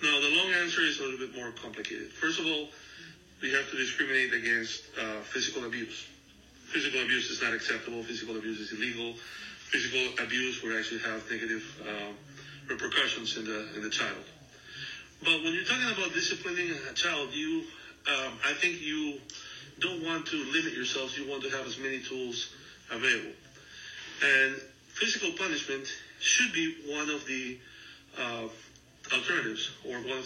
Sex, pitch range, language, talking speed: male, 115-180 Hz, English, 165 wpm